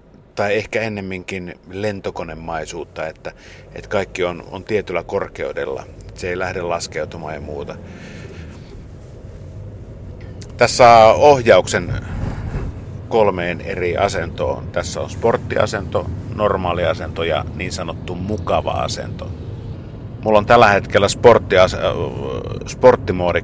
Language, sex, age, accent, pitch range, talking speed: Finnish, male, 50-69, native, 95-115 Hz, 95 wpm